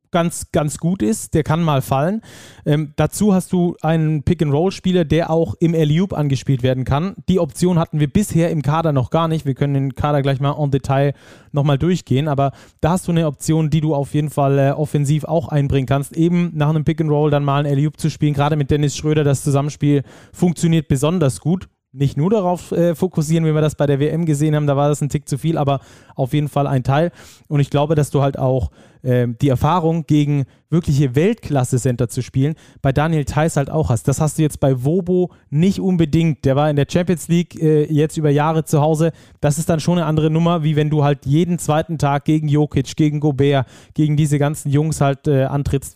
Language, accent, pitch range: German, German, 140-160 Hz